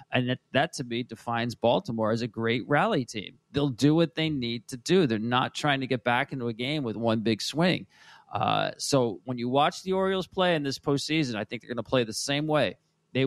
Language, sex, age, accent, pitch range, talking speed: English, male, 40-59, American, 115-150 Hz, 240 wpm